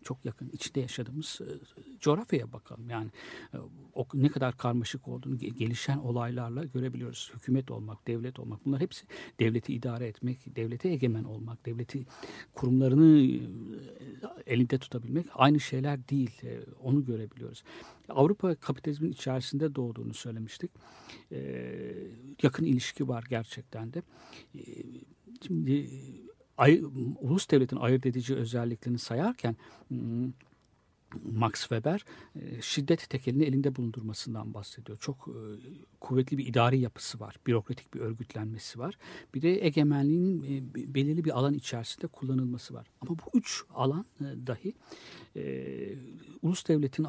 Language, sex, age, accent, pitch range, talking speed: Turkish, male, 60-79, native, 120-145 Hz, 110 wpm